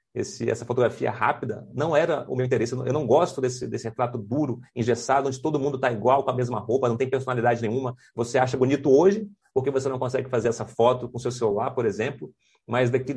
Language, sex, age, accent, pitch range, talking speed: Portuguese, male, 40-59, Brazilian, 120-135 Hz, 230 wpm